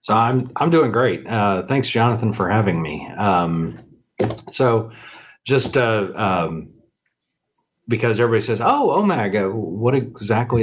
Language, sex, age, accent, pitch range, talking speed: English, male, 40-59, American, 90-115 Hz, 130 wpm